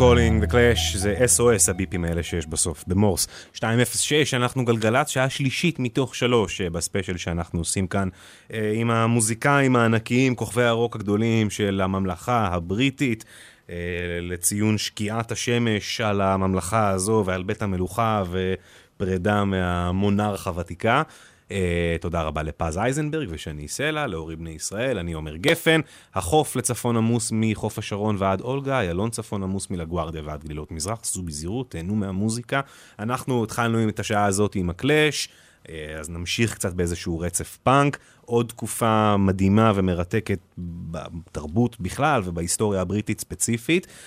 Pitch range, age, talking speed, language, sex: 90-120 Hz, 30-49, 125 wpm, English, male